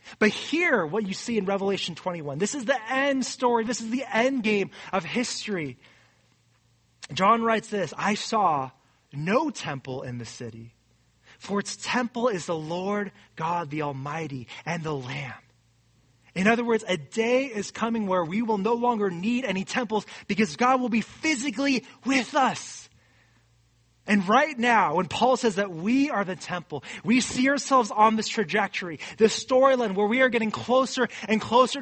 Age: 20-39